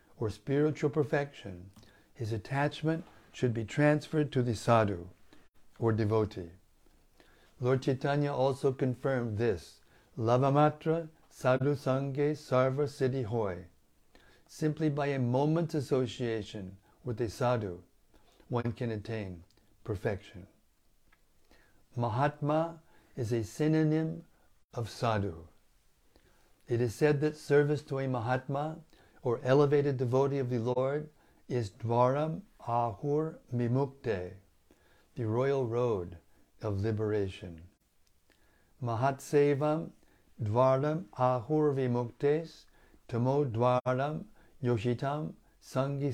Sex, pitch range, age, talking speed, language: male, 110-145 Hz, 60-79, 90 wpm, English